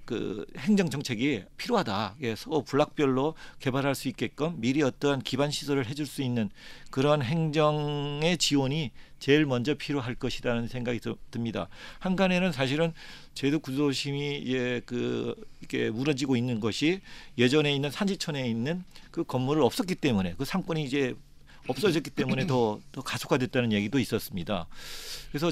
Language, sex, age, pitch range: Korean, male, 50-69, 120-160 Hz